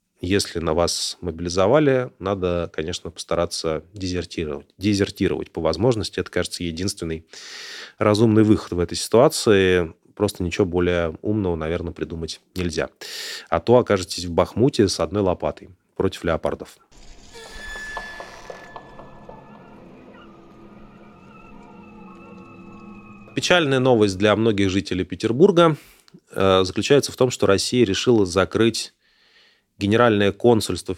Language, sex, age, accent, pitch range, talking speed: Russian, male, 30-49, native, 85-105 Hz, 100 wpm